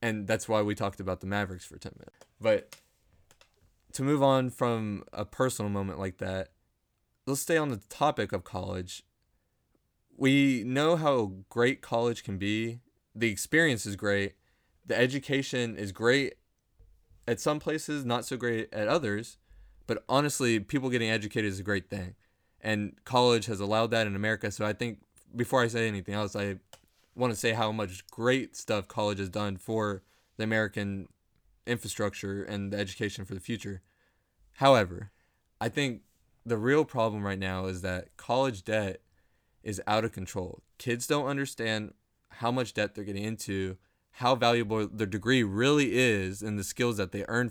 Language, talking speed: English, 170 wpm